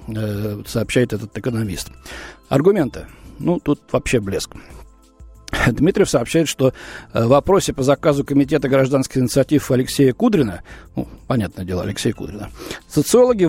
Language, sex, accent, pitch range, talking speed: Russian, male, native, 120-175 Hz, 115 wpm